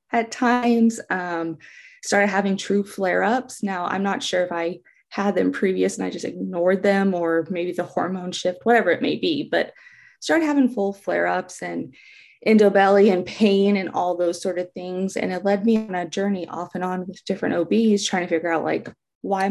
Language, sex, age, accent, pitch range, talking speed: English, female, 20-39, American, 180-230 Hz, 205 wpm